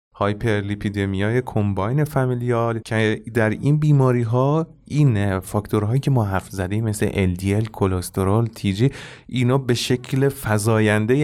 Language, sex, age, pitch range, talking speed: Persian, male, 30-49, 105-130 Hz, 120 wpm